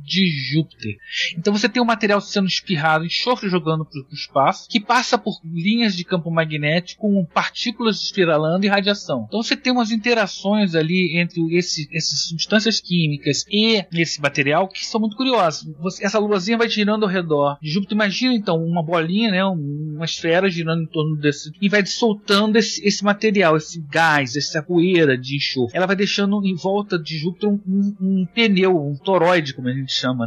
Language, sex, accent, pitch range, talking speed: Portuguese, male, Brazilian, 160-215 Hz, 180 wpm